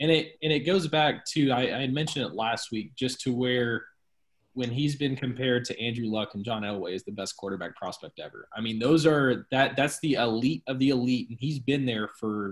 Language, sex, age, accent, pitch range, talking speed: English, male, 20-39, American, 105-135 Hz, 230 wpm